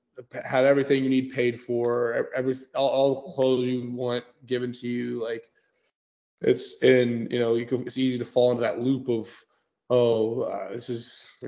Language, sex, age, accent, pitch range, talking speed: English, male, 20-39, American, 120-130 Hz, 190 wpm